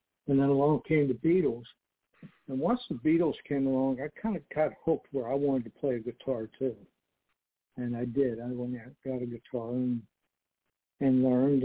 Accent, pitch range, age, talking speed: American, 125-140 Hz, 60-79, 190 wpm